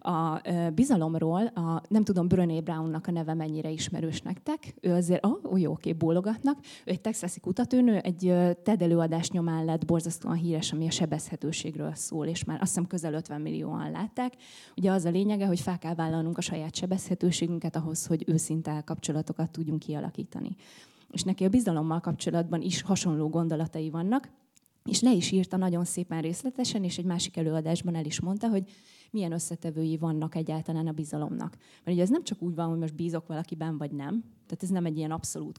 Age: 20-39